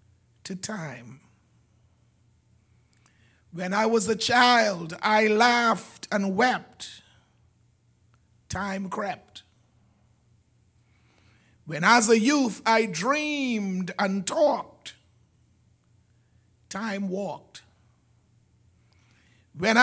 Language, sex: English, male